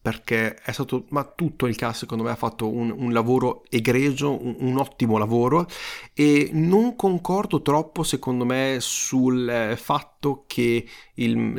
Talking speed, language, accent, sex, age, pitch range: 155 wpm, Italian, native, male, 30-49, 110-135 Hz